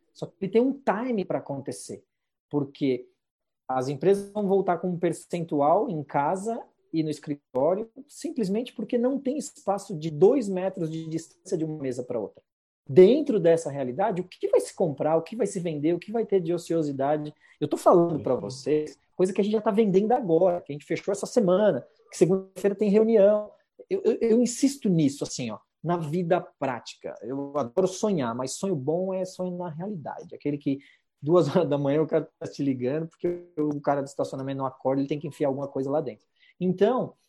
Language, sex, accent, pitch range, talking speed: Portuguese, male, Brazilian, 150-215 Hz, 200 wpm